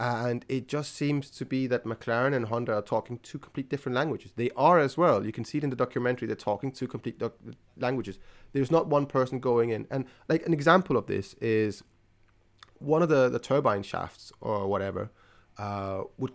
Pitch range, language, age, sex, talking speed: 105-145 Hz, English, 30-49, male, 205 wpm